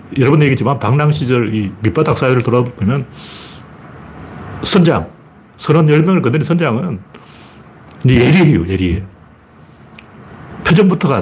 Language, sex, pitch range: Korean, male, 105-165 Hz